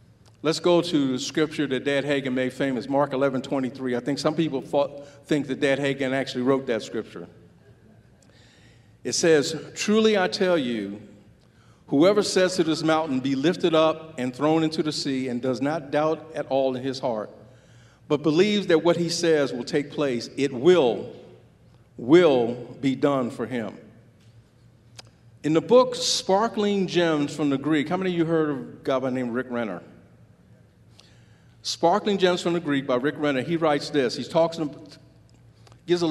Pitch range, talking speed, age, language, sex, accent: 130-170 Hz, 180 wpm, 50-69, English, male, American